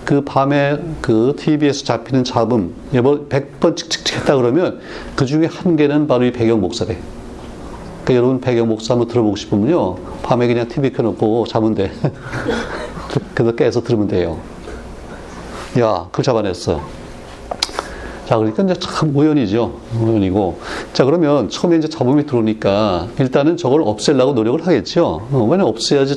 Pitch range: 115-150 Hz